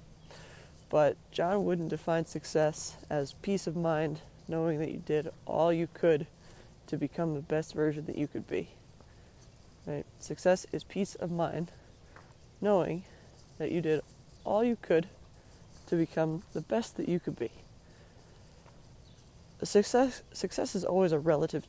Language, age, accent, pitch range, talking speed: English, 20-39, American, 150-170 Hz, 140 wpm